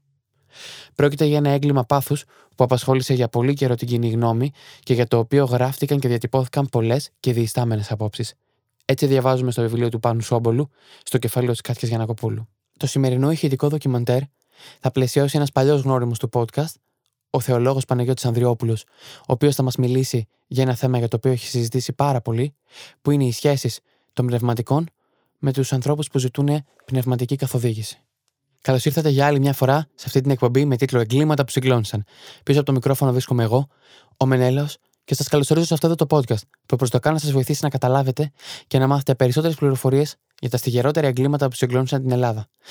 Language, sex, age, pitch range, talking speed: Greek, male, 20-39, 125-140 Hz, 185 wpm